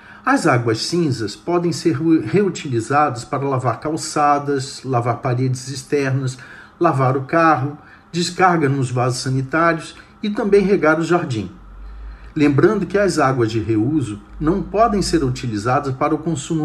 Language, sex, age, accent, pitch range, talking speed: Portuguese, male, 40-59, Brazilian, 130-165 Hz, 135 wpm